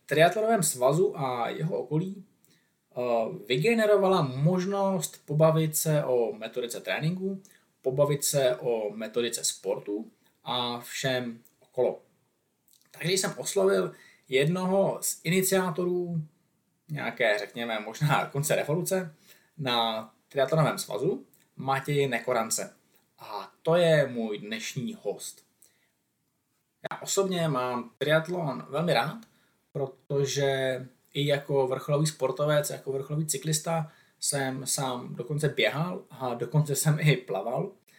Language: Czech